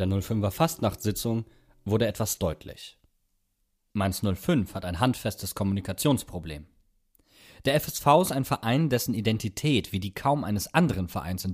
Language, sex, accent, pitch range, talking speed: German, male, German, 95-120 Hz, 135 wpm